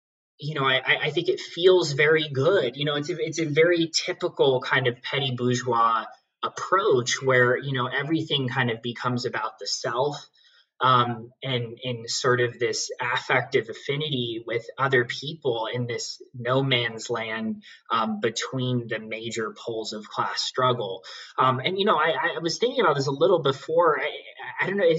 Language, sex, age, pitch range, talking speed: English, male, 20-39, 120-150 Hz, 170 wpm